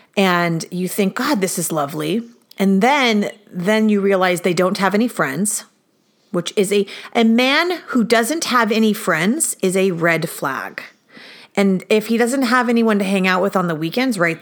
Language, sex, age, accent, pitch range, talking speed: English, female, 40-59, American, 175-220 Hz, 185 wpm